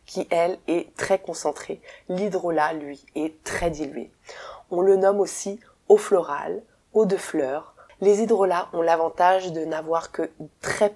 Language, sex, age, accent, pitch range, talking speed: French, female, 20-39, French, 160-205 Hz, 150 wpm